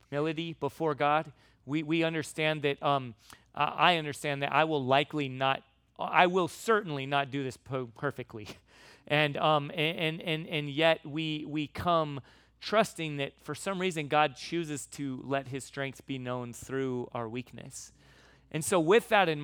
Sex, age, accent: male, 30-49, American